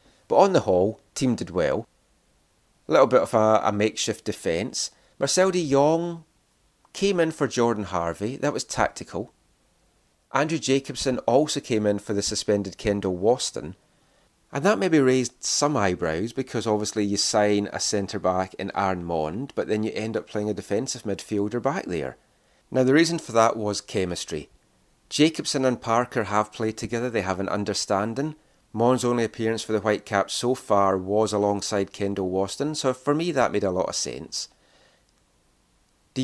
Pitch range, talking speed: 105-130 Hz, 165 wpm